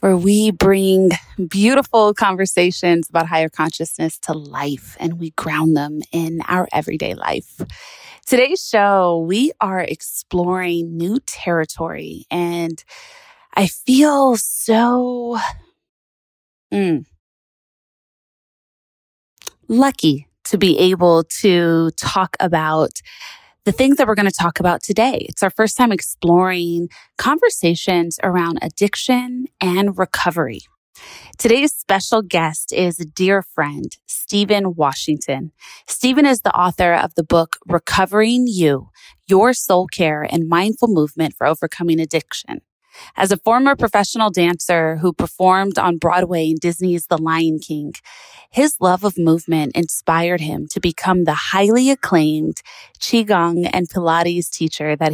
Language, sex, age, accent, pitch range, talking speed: English, female, 20-39, American, 165-215 Hz, 125 wpm